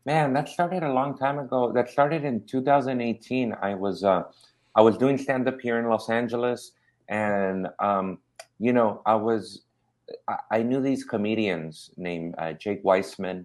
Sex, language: male, English